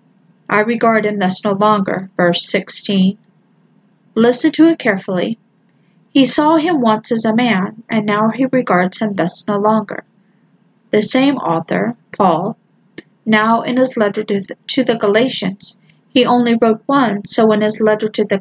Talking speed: 160 wpm